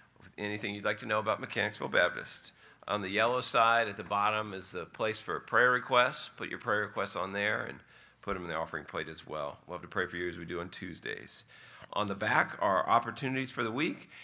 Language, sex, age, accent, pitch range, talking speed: English, male, 50-69, American, 90-115 Hz, 230 wpm